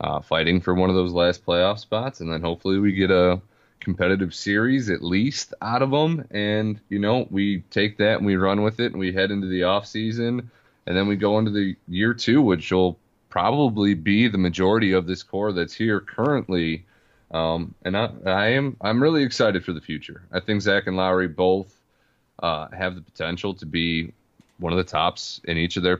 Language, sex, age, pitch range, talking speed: English, male, 30-49, 85-105 Hz, 210 wpm